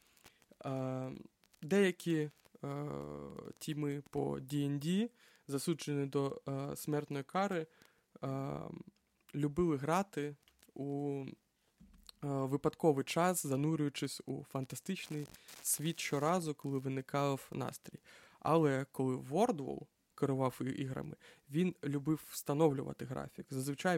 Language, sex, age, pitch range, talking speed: Ukrainian, male, 20-39, 135-155 Hz, 90 wpm